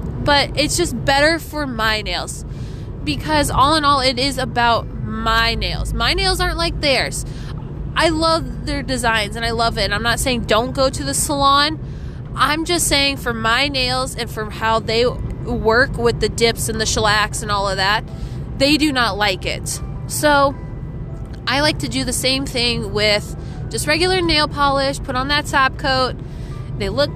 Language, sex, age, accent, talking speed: English, female, 20-39, American, 185 wpm